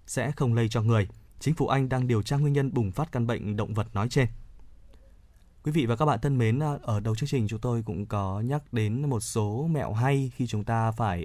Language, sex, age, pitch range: Vietnamese, male, 20-39, 105-140 Hz